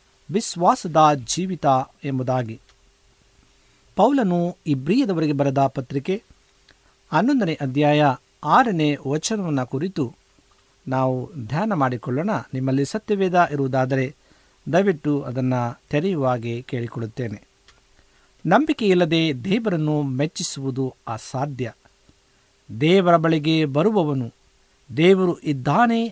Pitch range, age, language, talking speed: 125-175 Hz, 50-69, Kannada, 70 wpm